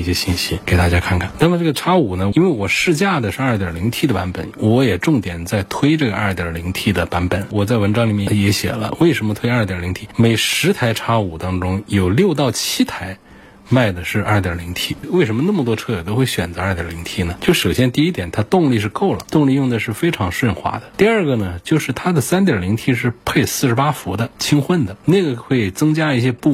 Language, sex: Chinese, male